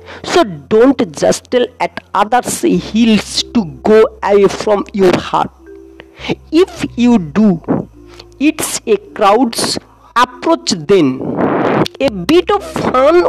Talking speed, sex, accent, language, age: 115 wpm, female, Indian, English, 50-69